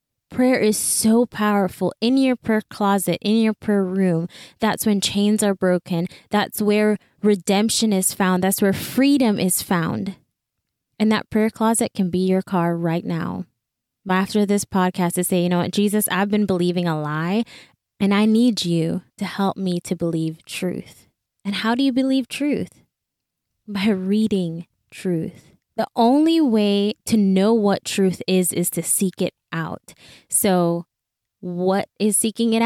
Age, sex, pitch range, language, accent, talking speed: 20-39, female, 180-220 Hz, English, American, 165 wpm